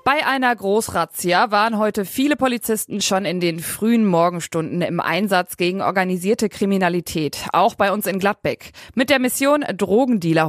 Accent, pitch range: German, 175-225 Hz